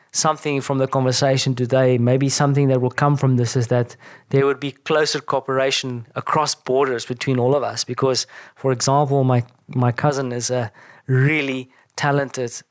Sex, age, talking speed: male, 20-39, 165 wpm